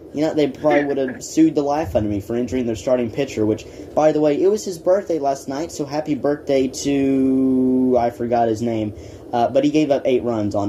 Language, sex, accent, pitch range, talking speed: English, male, American, 110-145 Hz, 235 wpm